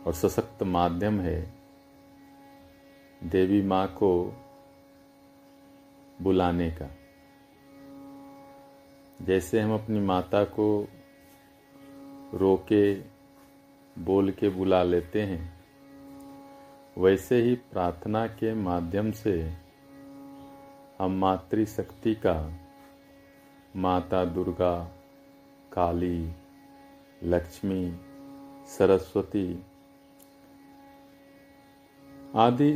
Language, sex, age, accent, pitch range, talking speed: Hindi, male, 50-69, native, 90-140 Hz, 65 wpm